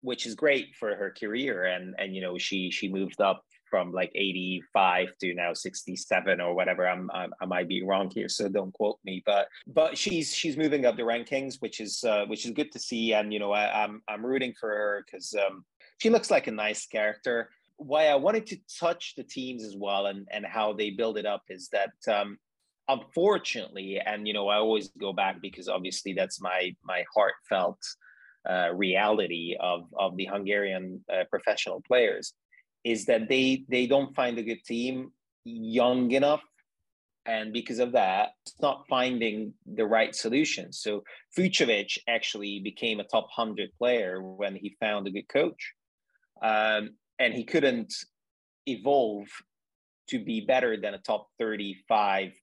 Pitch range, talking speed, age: 100-130 Hz, 180 wpm, 30-49